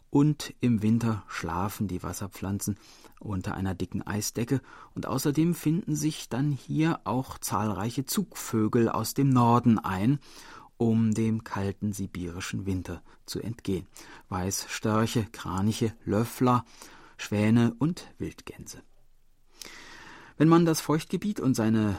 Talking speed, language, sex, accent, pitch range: 115 wpm, German, male, German, 100-135 Hz